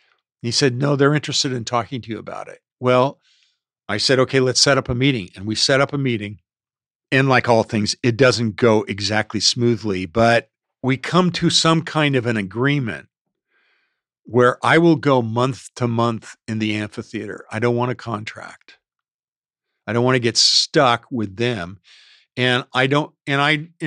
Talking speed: 180 wpm